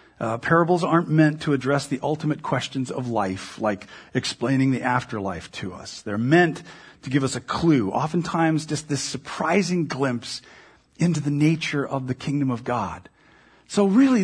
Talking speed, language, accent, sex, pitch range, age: 165 wpm, English, American, male, 135-190 Hz, 50-69